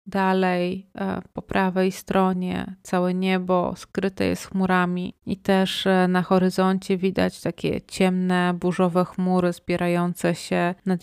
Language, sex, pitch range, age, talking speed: Polish, female, 185-200 Hz, 30-49, 115 wpm